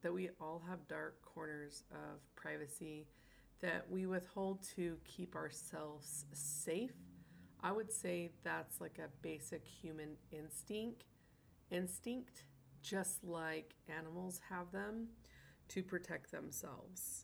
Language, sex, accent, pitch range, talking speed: English, female, American, 150-190 Hz, 115 wpm